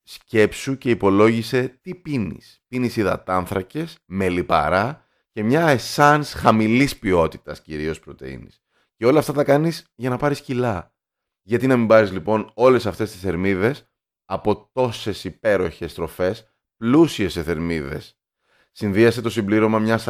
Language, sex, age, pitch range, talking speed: Greek, male, 30-49, 95-120 Hz, 135 wpm